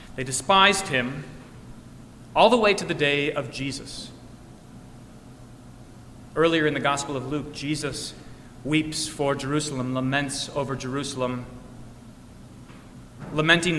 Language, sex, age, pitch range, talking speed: English, male, 30-49, 130-165 Hz, 110 wpm